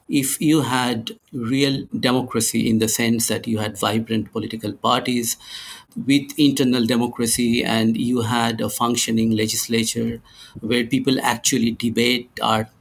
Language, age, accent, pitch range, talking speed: English, 50-69, Indian, 115-135 Hz, 130 wpm